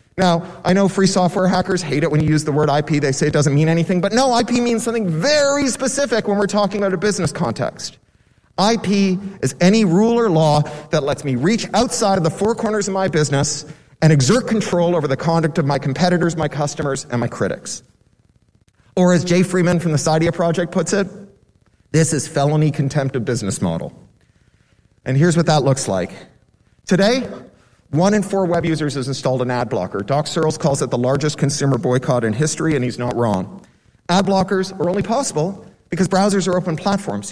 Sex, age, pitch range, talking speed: male, 40-59, 135-185 Hz, 200 wpm